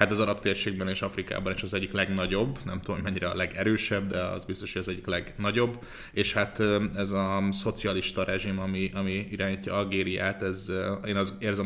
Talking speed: 180 wpm